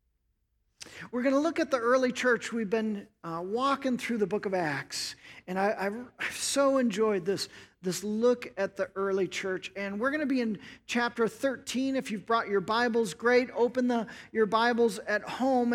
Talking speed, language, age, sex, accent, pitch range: 190 wpm, English, 40-59, male, American, 210-260 Hz